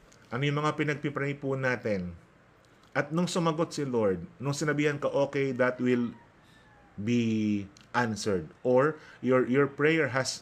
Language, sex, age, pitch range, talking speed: Filipino, male, 30-49, 115-165 Hz, 130 wpm